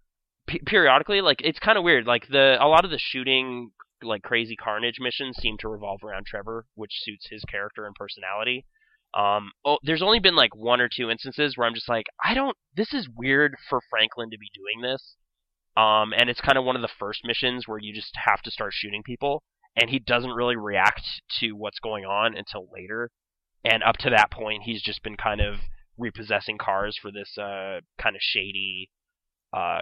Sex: male